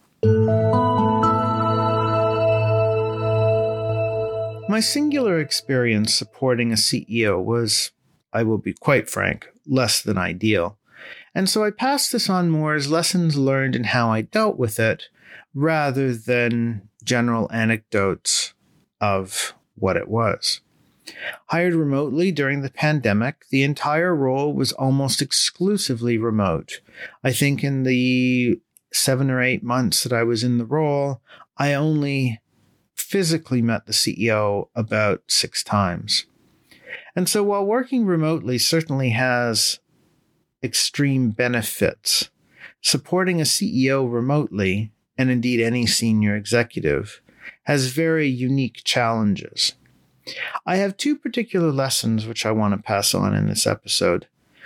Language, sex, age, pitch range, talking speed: English, male, 40-59, 110-150 Hz, 120 wpm